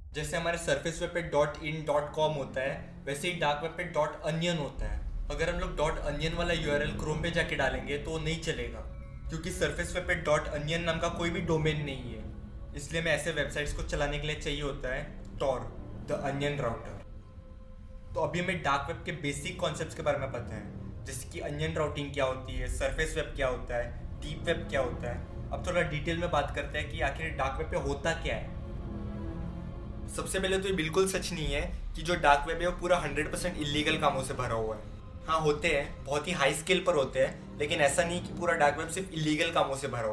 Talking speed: 220 wpm